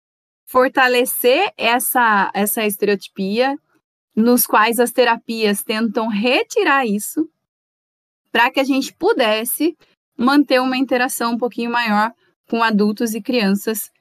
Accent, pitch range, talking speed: Brazilian, 220-280 Hz, 110 wpm